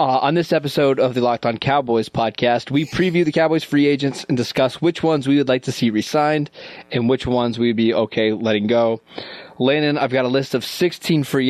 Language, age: English, 20-39